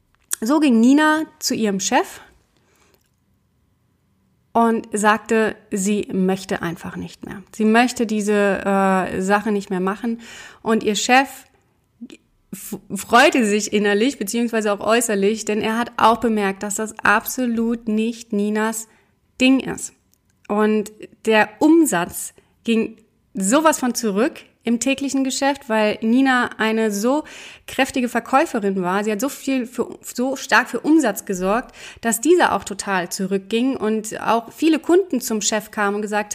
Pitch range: 200-235 Hz